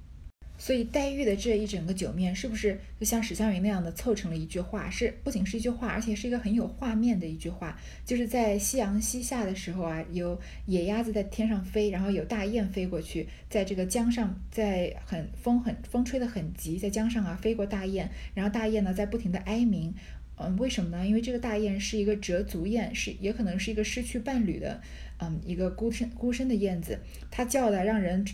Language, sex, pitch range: Chinese, female, 175-230 Hz